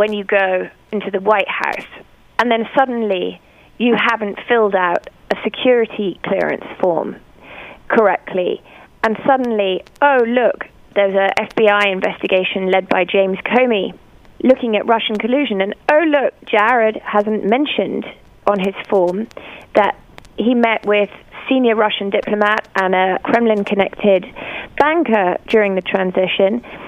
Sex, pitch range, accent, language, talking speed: female, 200-255 Hz, British, English, 130 wpm